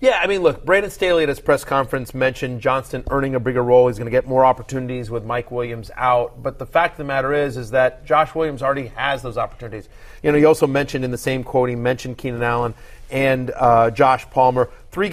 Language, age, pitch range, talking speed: English, 30-49, 125-150 Hz, 235 wpm